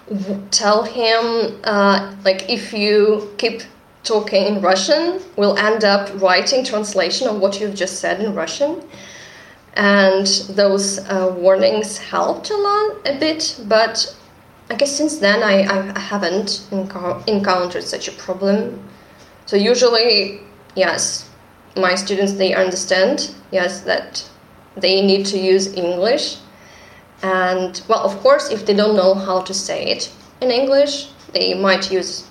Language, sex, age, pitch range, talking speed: English, female, 20-39, 190-220 Hz, 135 wpm